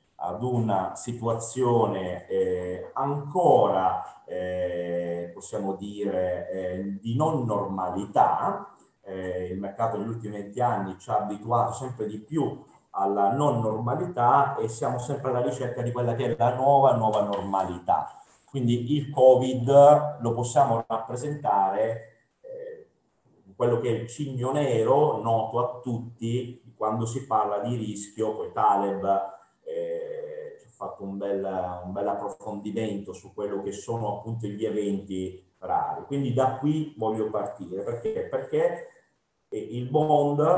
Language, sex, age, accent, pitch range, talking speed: Russian, male, 40-59, Italian, 105-150 Hz, 135 wpm